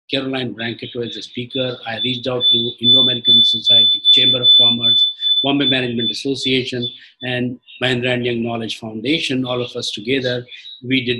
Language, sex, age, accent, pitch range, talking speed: English, male, 50-69, Indian, 120-145 Hz, 150 wpm